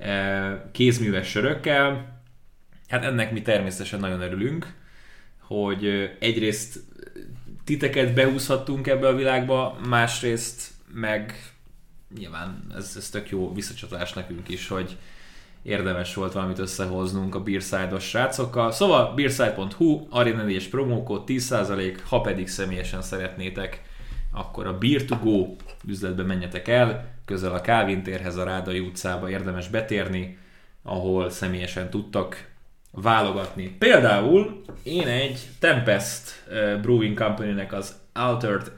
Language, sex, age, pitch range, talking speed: Hungarian, male, 20-39, 95-120 Hz, 110 wpm